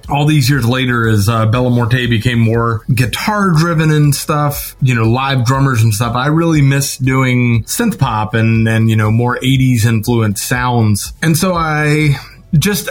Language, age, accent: English, 30-49, American